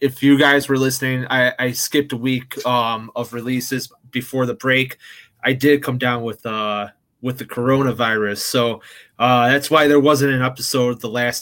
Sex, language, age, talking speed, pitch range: male, English, 20-39, 185 wpm, 125-150 Hz